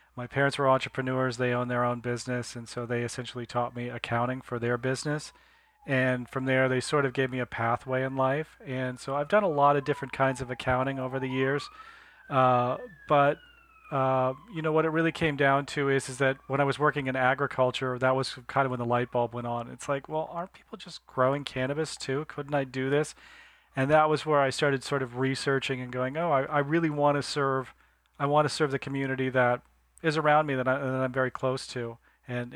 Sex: male